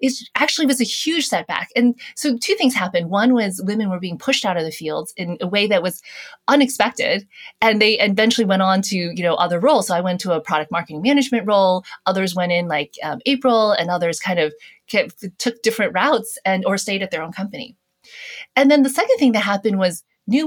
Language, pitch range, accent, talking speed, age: English, 185-255 Hz, American, 225 wpm, 20-39